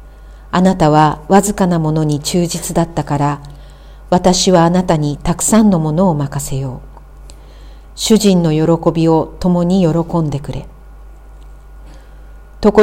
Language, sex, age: Japanese, female, 50-69